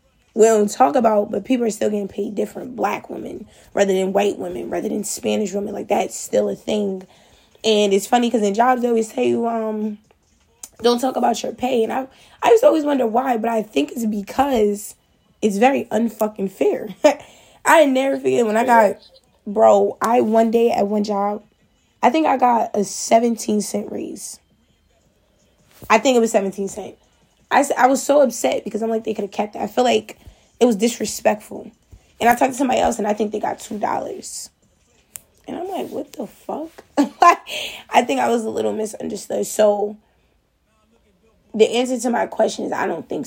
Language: English